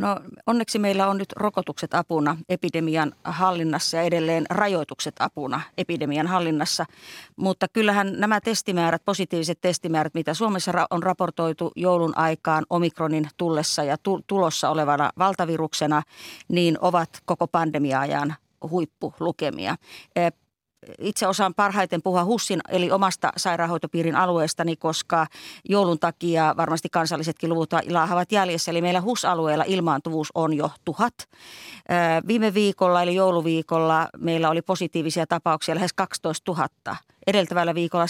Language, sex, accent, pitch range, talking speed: Finnish, female, native, 165-190 Hz, 120 wpm